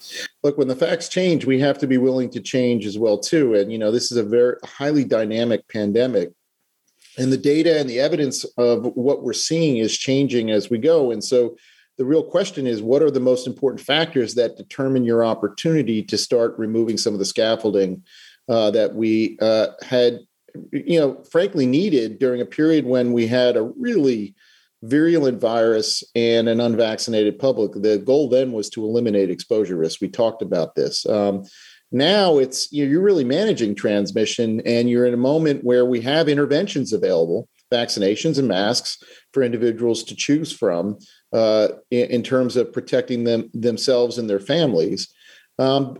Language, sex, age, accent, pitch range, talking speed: English, male, 40-59, American, 115-140 Hz, 175 wpm